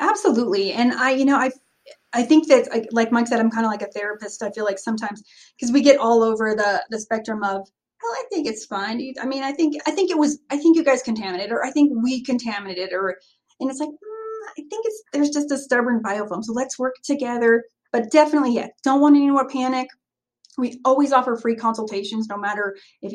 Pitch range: 210-265 Hz